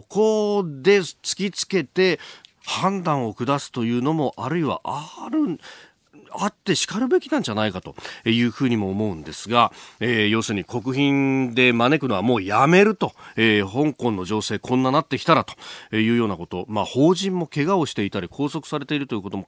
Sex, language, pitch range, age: male, Japanese, 110-170 Hz, 40-59